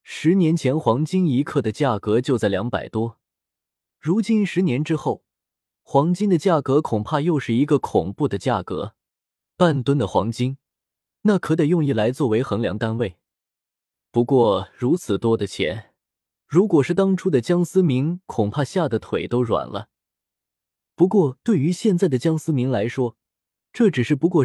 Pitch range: 115-170 Hz